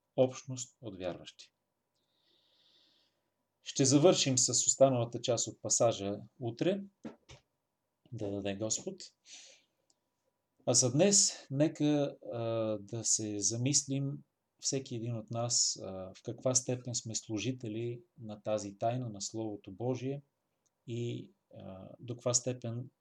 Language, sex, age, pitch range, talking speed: Bulgarian, male, 30-49, 110-140 Hz, 105 wpm